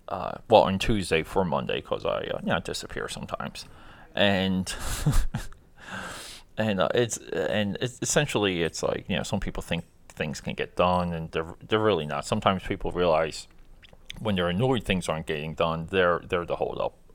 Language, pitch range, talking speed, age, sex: English, 85-105 Hz, 180 wpm, 30-49, male